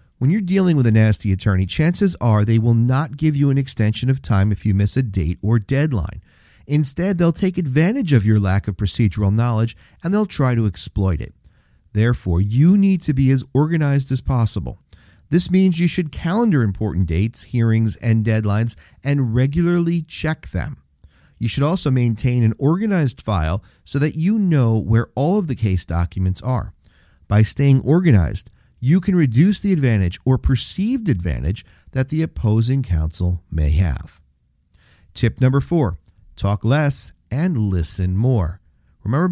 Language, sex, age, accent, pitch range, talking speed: English, male, 40-59, American, 100-150 Hz, 165 wpm